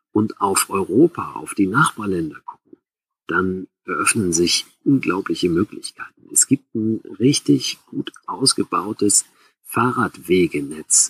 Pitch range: 100-170 Hz